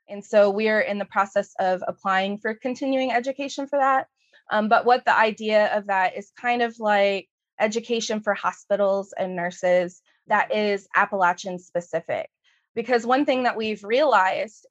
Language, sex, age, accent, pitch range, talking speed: English, female, 20-39, American, 185-230 Hz, 165 wpm